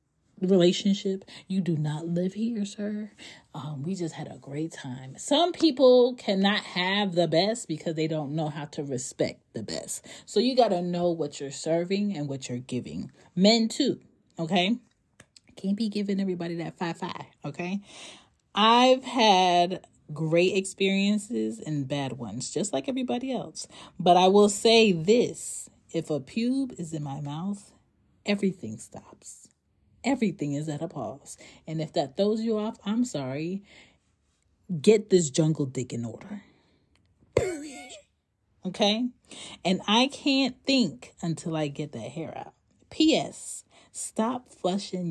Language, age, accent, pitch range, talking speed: English, 30-49, American, 155-220 Hz, 145 wpm